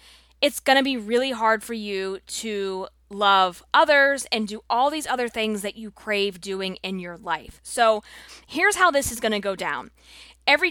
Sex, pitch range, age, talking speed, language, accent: female, 195-255 Hz, 20-39, 180 wpm, English, American